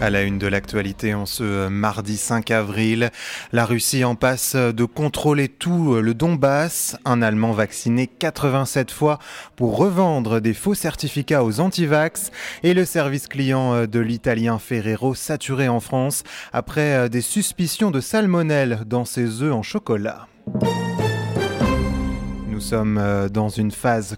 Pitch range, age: 115-150 Hz, 20-39